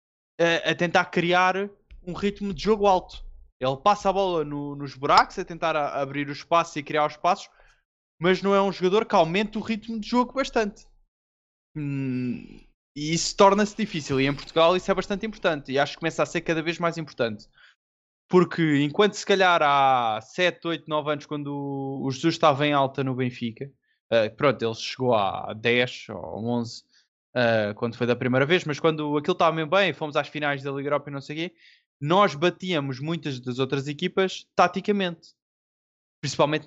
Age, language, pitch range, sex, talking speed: 20-39, Portuguese, 140-185 Hz, male, 190 wpm